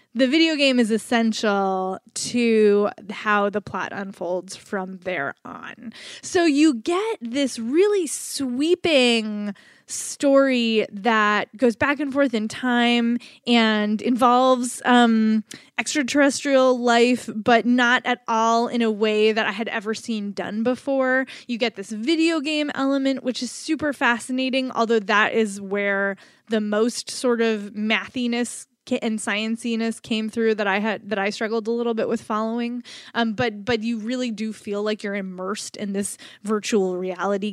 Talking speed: 150 wpm